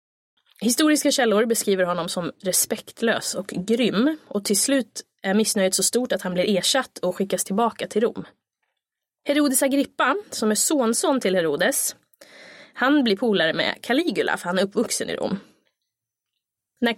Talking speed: 150 wpm